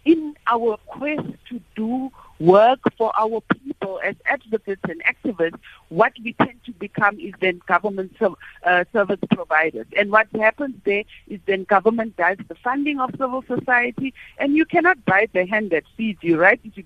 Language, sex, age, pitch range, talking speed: English, female, 60-79, 200-245 Hz, 180 wpm